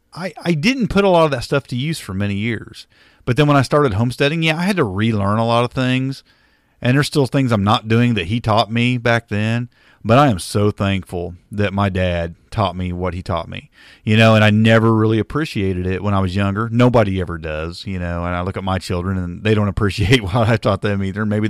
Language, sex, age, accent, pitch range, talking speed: English, male, 40-59, American, 95-135 Hz, 250 wpm